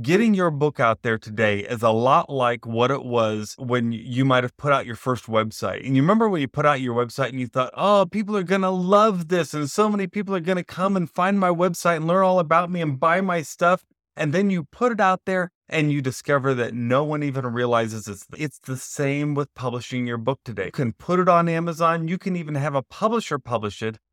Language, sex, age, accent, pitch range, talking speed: English, male, 30-49, American, 120-165 Hz, 250 wpm